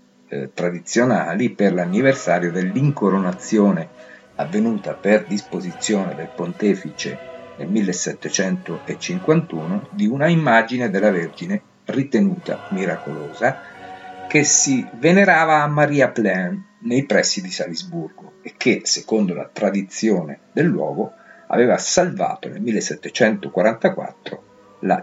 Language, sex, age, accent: Italian, male, 50-69, native